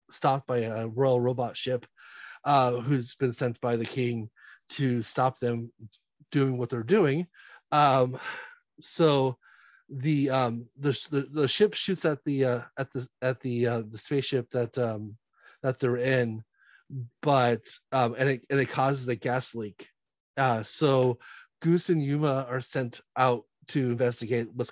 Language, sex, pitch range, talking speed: English, male, 120-145 Hz, 155 wpm